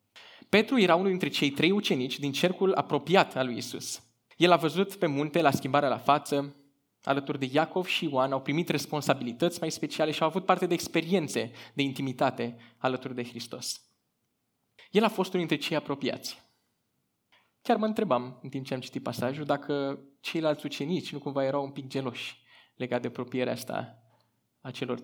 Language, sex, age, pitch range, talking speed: Romanian, male, 20-39, 135-190 Hz, 175 wpm